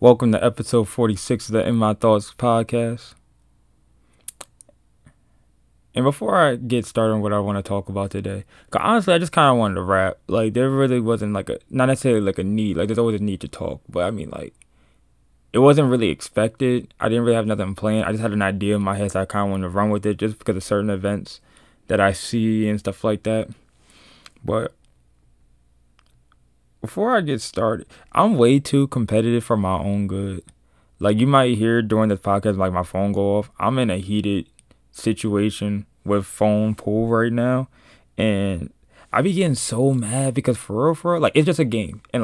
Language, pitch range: English, 100-125 Hz